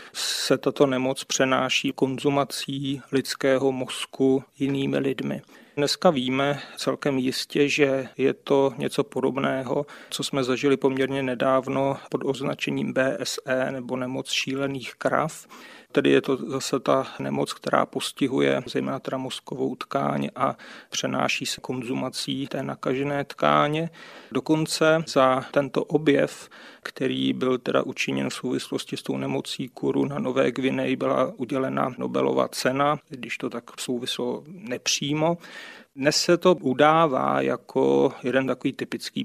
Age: 40-59